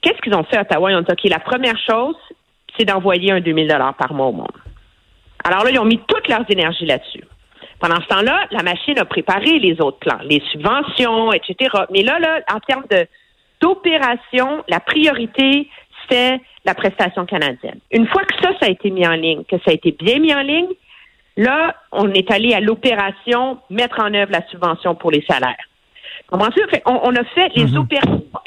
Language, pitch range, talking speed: French, 195-280 Hz, 200 wpm